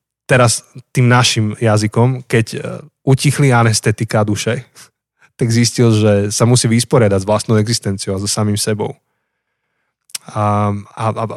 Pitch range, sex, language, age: 115-145 Hz, male, Slovak, 20-39